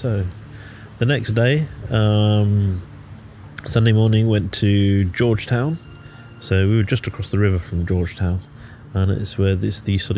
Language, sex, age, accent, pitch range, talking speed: English, male, 30-49, British, 90-115 Hz, 145 wpm